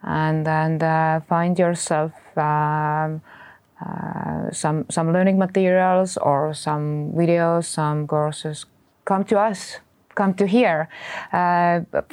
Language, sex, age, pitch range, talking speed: English, female, 20-39, 165-205 Hz, 115 wpm